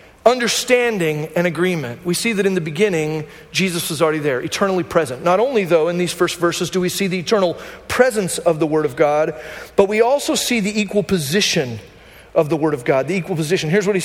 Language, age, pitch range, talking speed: English, 40-59, 185-275 Hz, 220 wpm